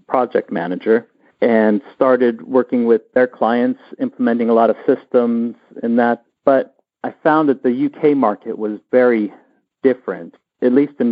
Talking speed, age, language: 150 wpm, 40-59, English